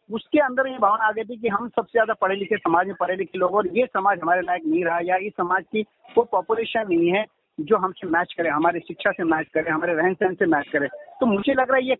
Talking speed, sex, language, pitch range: 275 wpm, male, Hindi, 175-235 Hz